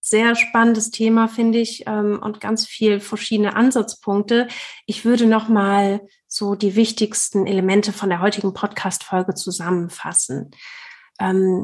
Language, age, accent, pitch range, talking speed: German, 30-49, German, 185-220 Hz, 125 wpm